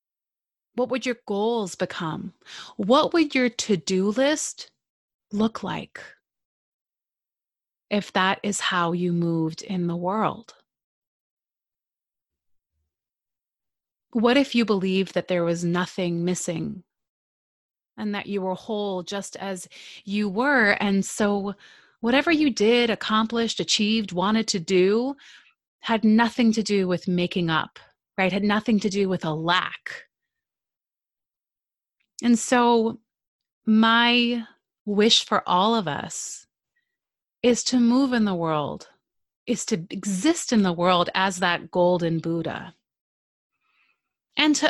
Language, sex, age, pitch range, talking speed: English, female, 30-49, 185-255 Hz, 120 wpm